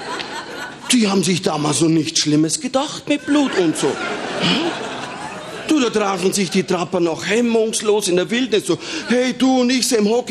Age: 40-59